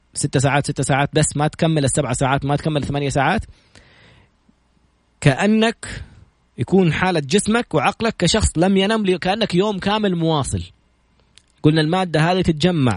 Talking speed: 135 wpm